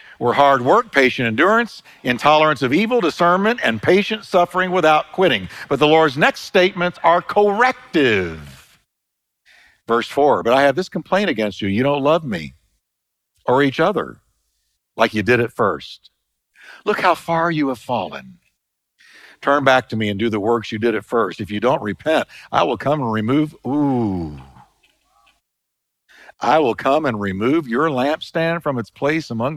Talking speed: 165 wpm